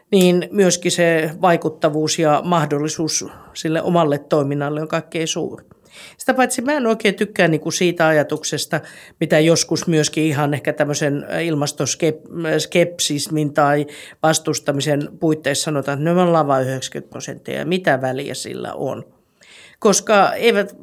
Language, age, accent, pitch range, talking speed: Finnish, 50-69, native, 145-185 Hz, 130 wpm